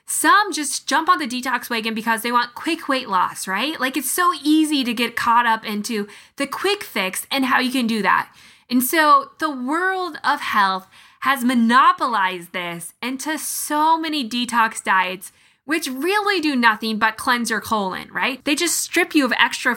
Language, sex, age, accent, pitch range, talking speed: English, female, 10-29, American, 225-310 Hz, 185 wpm